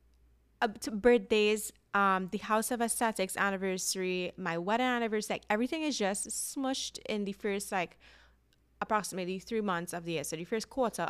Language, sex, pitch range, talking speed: English, female, 170-215 Hz, 150 wpm